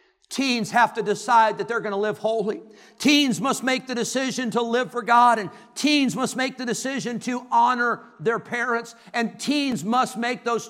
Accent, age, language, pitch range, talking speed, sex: American, 50-69, English, 205-250 Hz, 190 wpm, male